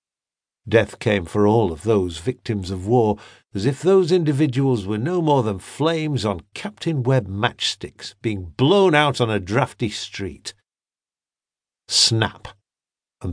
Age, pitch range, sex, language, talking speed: 50-69, 105-150 Hz, male, English, 140 wpm